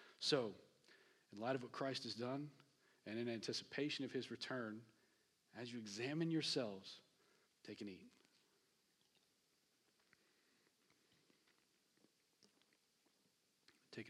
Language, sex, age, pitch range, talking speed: English, male, 40-59, 105-125 Hz, 95 wpm